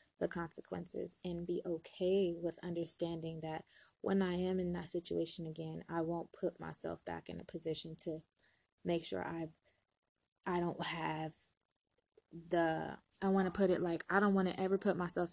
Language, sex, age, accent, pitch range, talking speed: English, female, 20-39, American, 160-180 Hz, 170 wpm